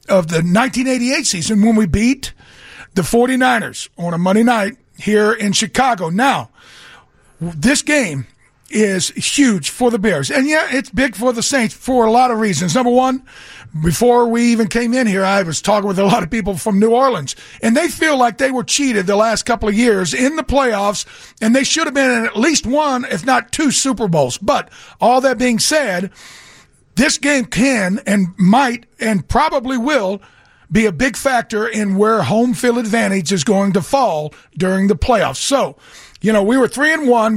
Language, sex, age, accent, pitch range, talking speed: English, male, 50-69, American, 195-245 Hz, 195 wpm